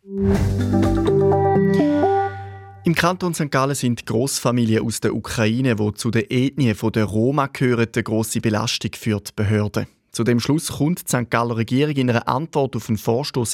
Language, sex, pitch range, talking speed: German, male, 110-135 Hz, 155 wpm